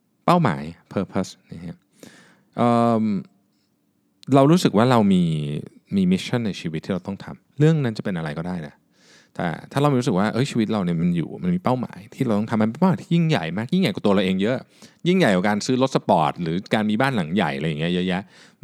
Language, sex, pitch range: Thai, male, 100-170 Hz